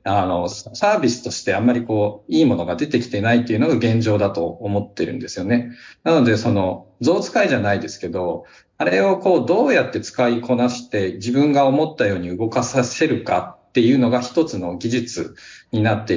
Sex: male